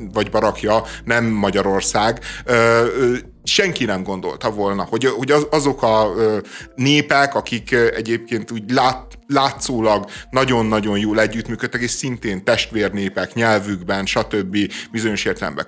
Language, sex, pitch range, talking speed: Hungarian, male, 105-120 Hz, 105 wpm